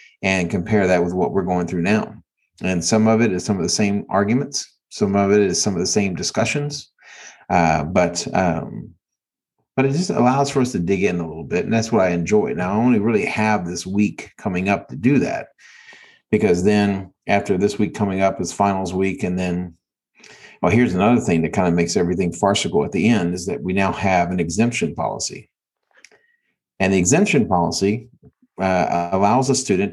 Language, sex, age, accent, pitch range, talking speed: English, male, 40-59, American, 95-125 Hz, 205 wpm